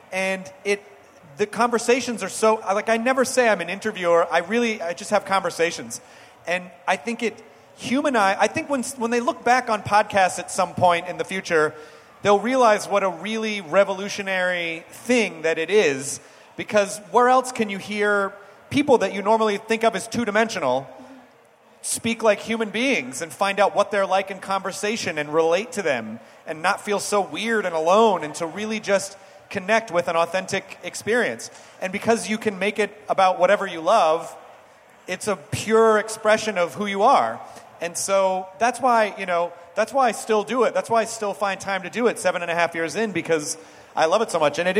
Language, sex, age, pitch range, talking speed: English, male, 30-49, 175-220 Hz, 200 wpm